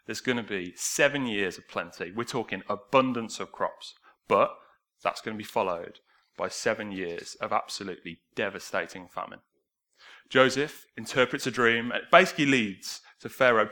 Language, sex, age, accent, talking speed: English, male, 30-49, British, 155 wpm